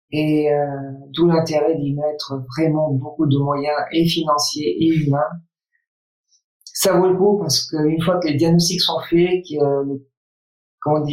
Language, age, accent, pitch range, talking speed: French, 50-69, French, 145-170 Hz, 145 wpm